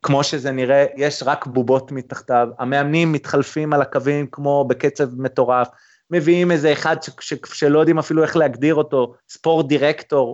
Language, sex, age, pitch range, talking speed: Hebrew, male, 20-39, 135-180 Hz, 155 wpm